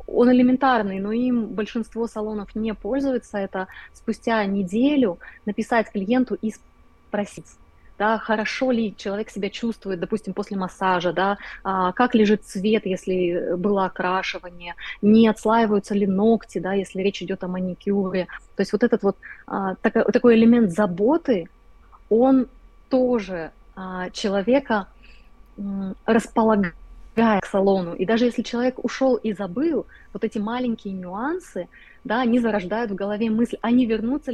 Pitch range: 190-225 Hz